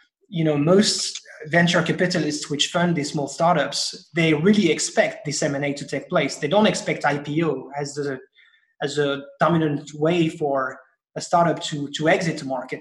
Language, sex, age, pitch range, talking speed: English, male, 30-49, 145-185 Hz, 170 wpm